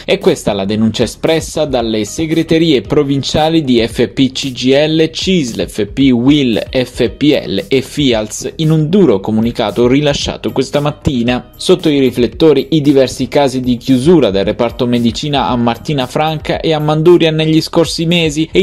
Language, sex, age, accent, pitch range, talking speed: Italian, male, 20-39, native, 120-155 Hz, 140 wpm